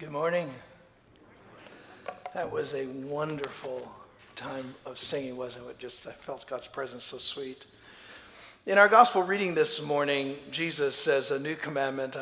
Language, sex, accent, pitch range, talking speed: English, male, American, 120-145 Hz, 140 wpm